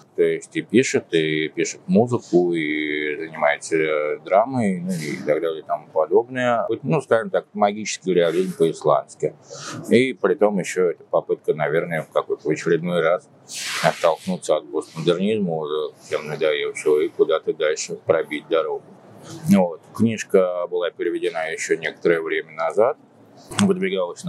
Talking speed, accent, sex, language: 130 wpm, native, male, Russian